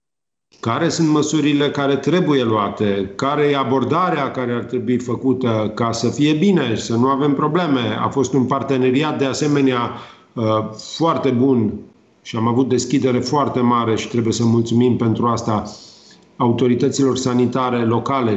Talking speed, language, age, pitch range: 145 wpm, Romanian, 40-59, 115-135 Hz